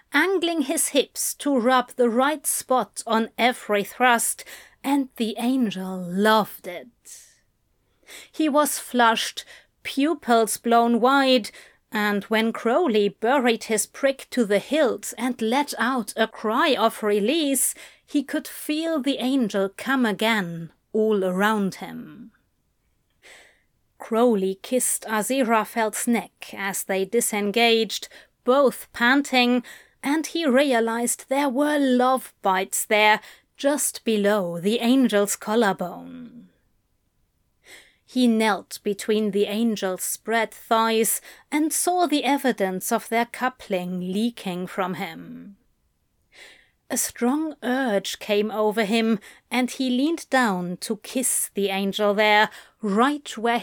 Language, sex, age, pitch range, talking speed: English, female, 30-49, 210-260 Hz, 115 wpm